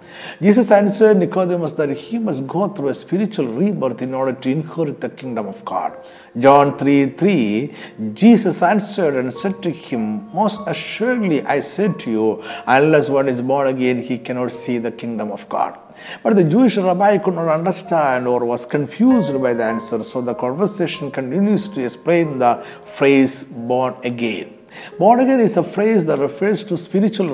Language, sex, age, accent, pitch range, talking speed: Malayalam, male, 50-69, native, 125-185 Hz, 170 wpm